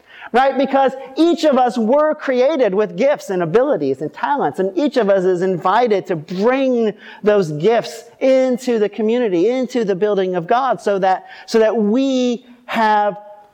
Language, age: English, 40-59